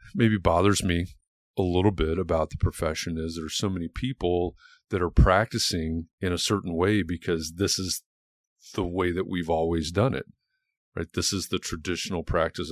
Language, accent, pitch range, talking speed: English, American, 85-110 Hz, 180 wpm